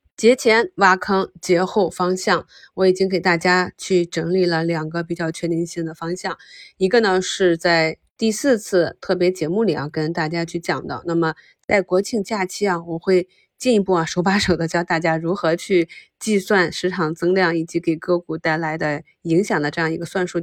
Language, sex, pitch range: Chinese, female, 165-200 Hz